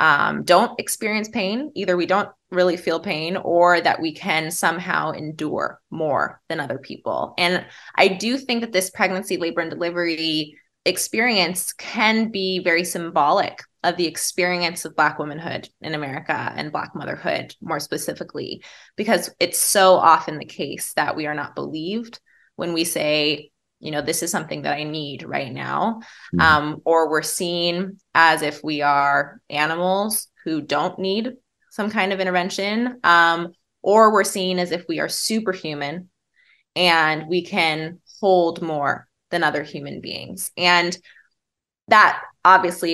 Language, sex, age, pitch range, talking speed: English, female, 20-39, 160-190 Hz, 150 wpm